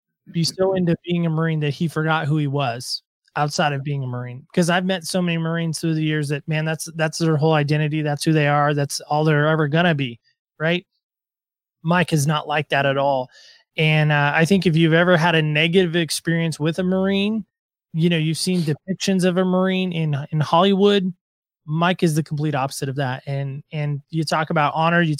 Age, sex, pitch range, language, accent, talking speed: 20-39, male, 155-180 Hz, English, American, 215 wpm